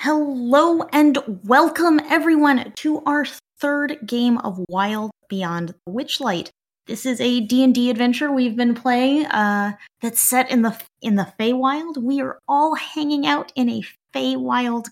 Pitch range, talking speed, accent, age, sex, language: 230-310 Hz, 150 wpm, American, 20-39, female, English